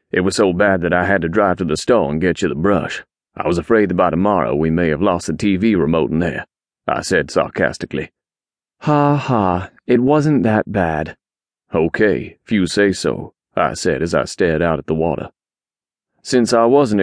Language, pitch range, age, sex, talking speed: English, 90-105 Hz, 30-49, male, 205 wpm